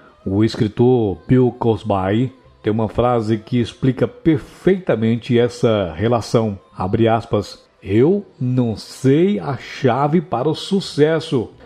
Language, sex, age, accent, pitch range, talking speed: Portuguese, male, 60-79, Brazilian, 110-150 Hz, 115 wpm